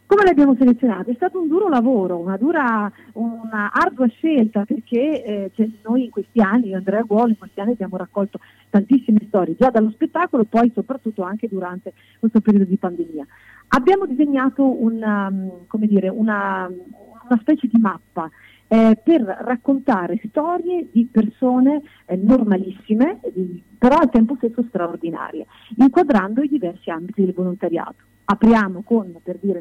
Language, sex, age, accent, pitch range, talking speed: Italian, female, 40-59, native, 185-245 Hz, 155 wpm